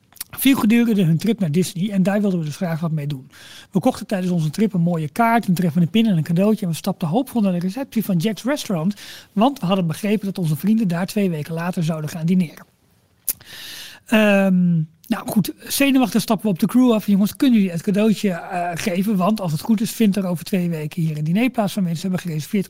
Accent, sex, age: Dutch, male, 40-59